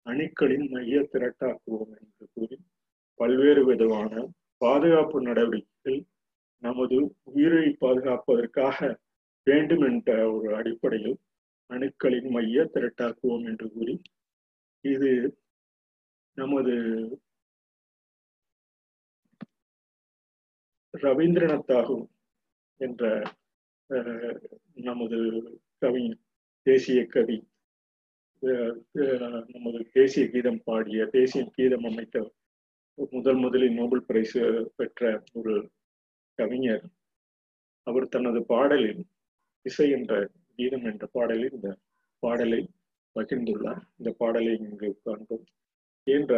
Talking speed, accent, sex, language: 80 wpm, native, male, Tamil